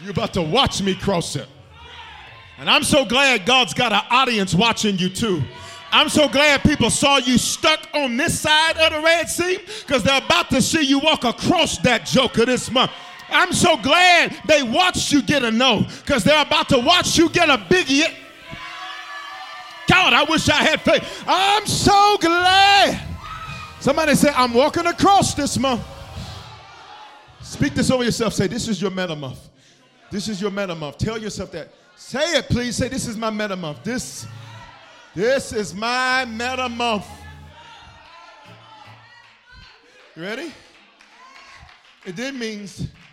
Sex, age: male, 40-59